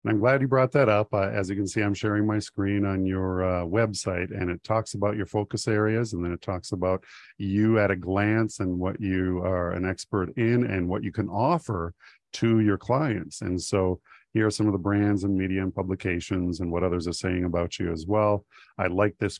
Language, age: English, 50-69